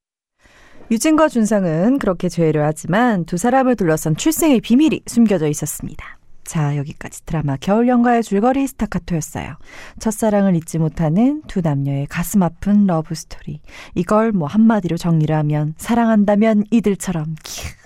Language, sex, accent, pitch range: Korean, female, native, 155-225 Hz